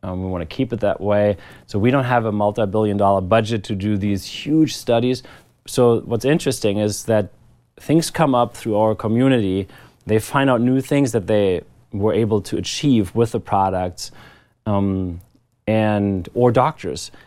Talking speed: 175 wpm